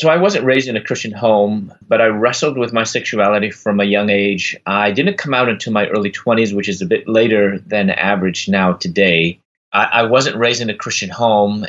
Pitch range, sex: 95-120 Hz, male